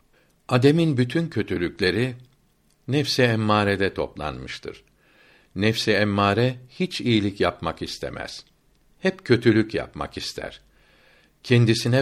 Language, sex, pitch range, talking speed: Turkish, male, 95-120 Hz, 85 wpm